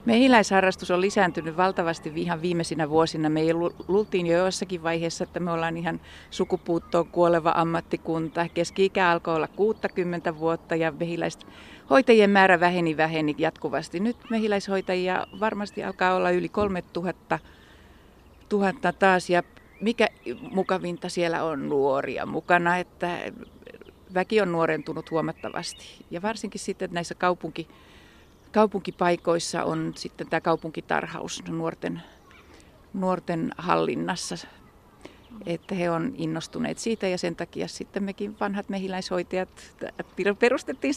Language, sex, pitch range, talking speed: Finnish, female, 165-200 Hz, 115 wpm